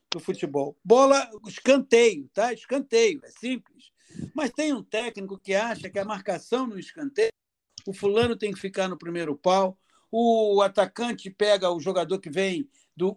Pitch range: 195-260 Hz